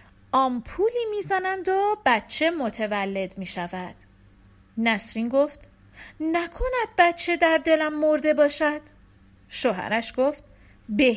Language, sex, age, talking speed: Persian, female, 40-59, 90 wpm